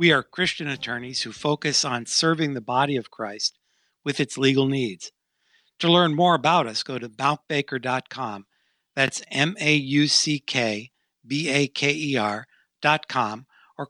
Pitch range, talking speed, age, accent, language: 125-160 Hz, 155 wpm, 60-79, American, English